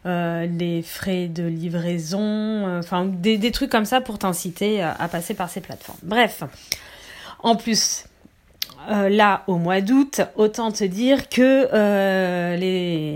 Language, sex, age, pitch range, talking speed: French, female, 30-49, 175-230 Hz, 150 wpm